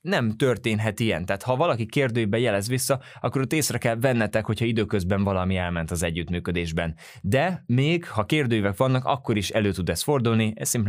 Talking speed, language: 175 wpm, Hungarian